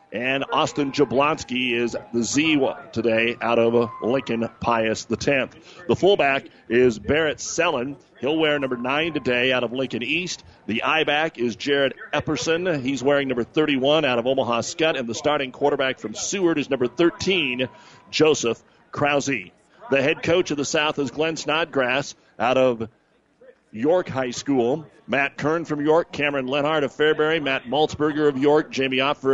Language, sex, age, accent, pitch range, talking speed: English, male, 40-59, American, 120-150 Hz, 165 wpm